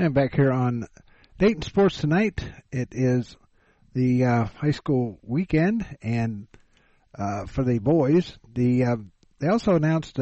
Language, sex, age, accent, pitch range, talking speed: English, male, 50-69, American, 115-145 Hz, 140 wpm